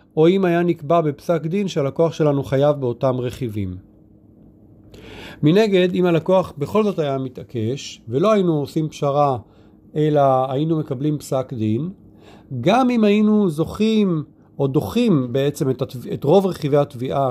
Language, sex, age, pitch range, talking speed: Hebrew, male, 40-59, 115-175 Hz, 140 wpm